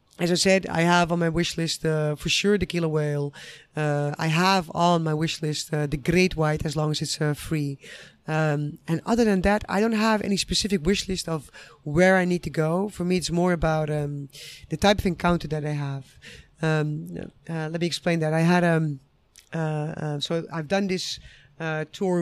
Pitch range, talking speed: 150-175 Hz, 215 wpm